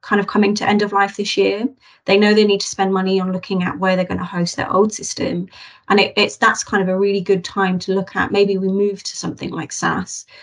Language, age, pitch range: English, 30-49, 190-210 Hz